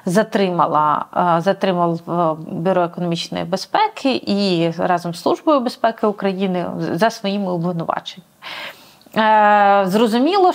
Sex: female